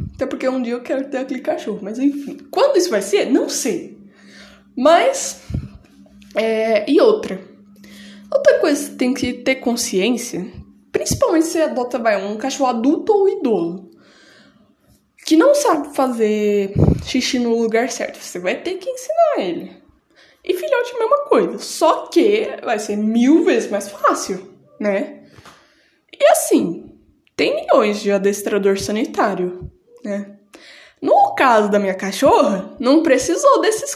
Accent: Brazilian